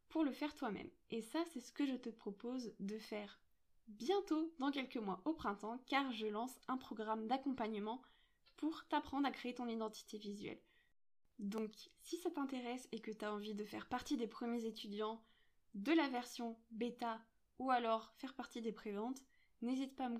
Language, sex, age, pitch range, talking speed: French, female, 20-39, 220-275 Hz, 185 wpm